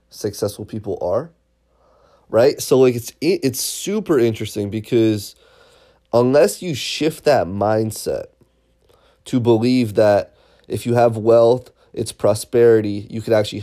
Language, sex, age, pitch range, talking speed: English, male, 20-39, 110-125 Hz, 130 wpm